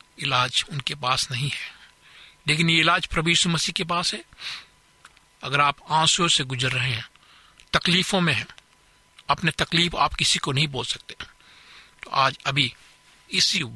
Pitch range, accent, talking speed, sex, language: 130-160 Hz, native, 120 wpm, male, Hindi